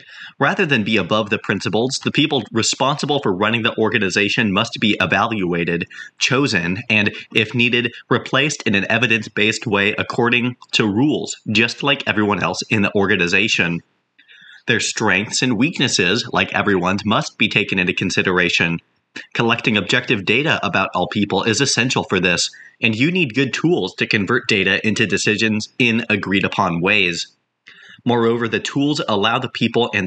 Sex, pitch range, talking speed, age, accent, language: male, 100-125 Hz, 150 wpm, 30-49, American, English